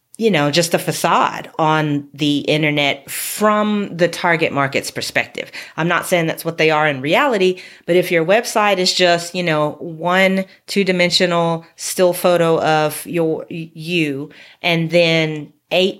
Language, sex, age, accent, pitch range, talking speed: English, female, 30-49, American, 145-175 Hz, 150 wpm